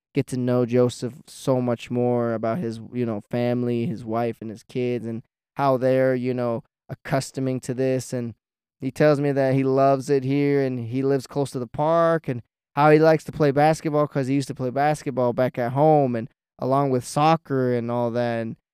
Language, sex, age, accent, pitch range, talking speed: English, male, 20-39, American, 125-145 Hz, 210 wpm